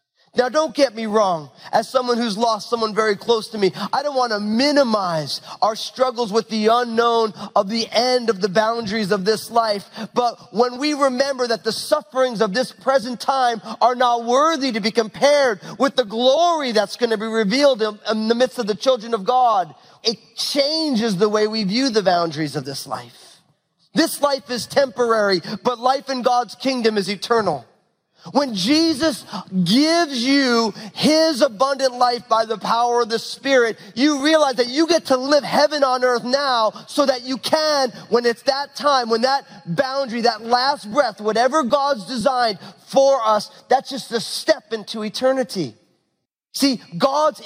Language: English